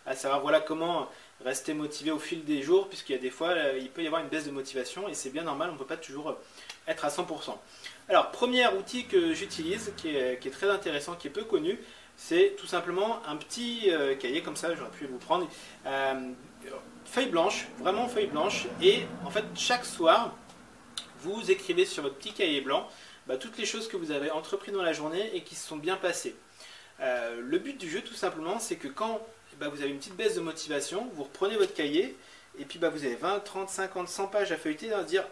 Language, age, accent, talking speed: French, 30-49, French, 230 wpm